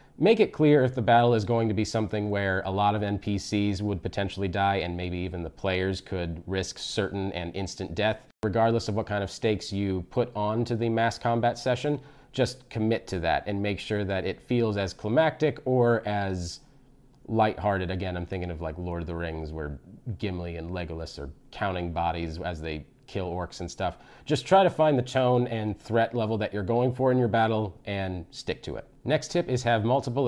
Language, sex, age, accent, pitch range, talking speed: English, male, 30-49, American, 95-120 Hz, 210 wpm